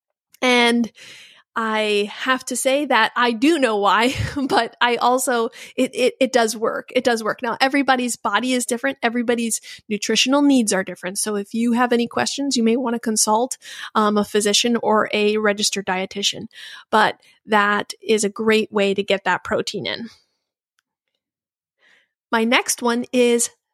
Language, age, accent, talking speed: English, 30-49, American, 160 wpm